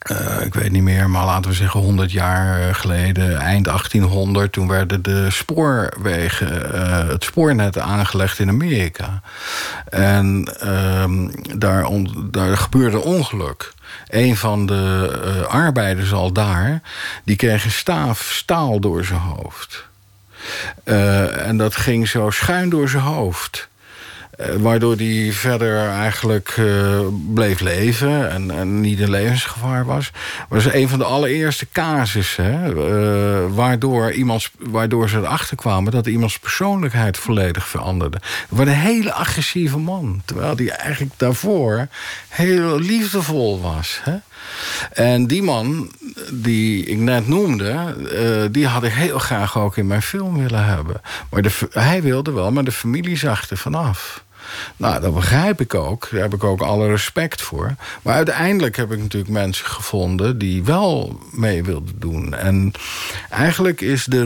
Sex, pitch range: male, 95-135 Hz